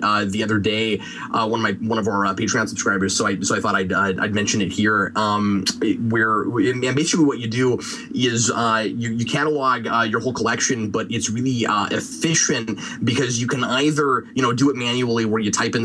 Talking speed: 220 wpm